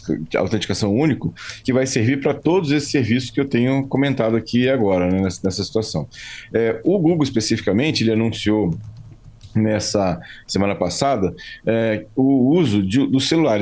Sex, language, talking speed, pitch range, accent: male, Portuguese, 145 wpm, 105-135 Hz, Brazilian